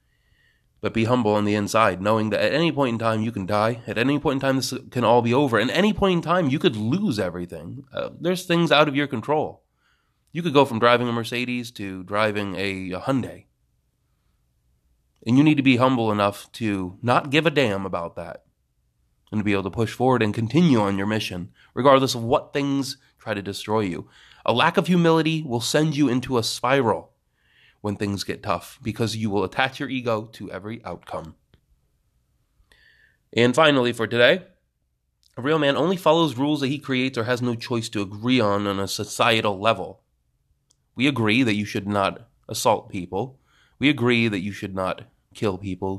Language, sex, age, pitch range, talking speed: English, male, 30-49, 100-140 Hz, 195 wpm